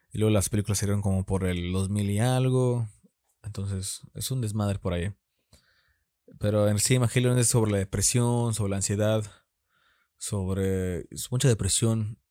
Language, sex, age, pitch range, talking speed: Spanish, male, 20-39, 95-115 Hz, 155 wpm